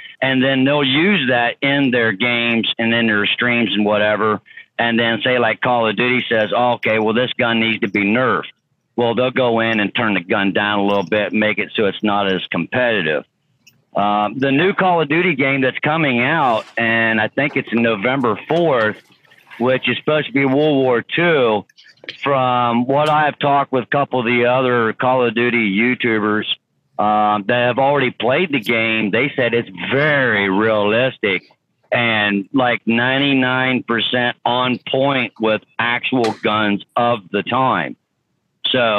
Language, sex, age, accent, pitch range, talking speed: English, male, 50-69, American, 110-135 Hz, 175 wpm